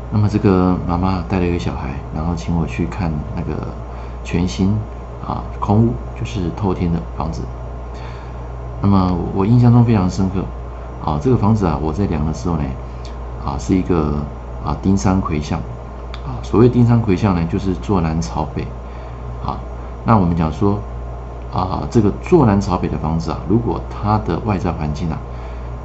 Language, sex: Chinese, male